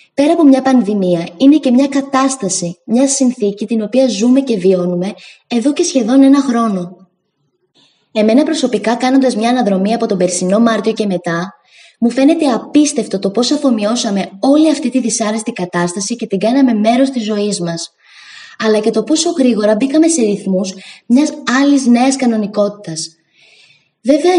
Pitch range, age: 195-270 Hz, 20-39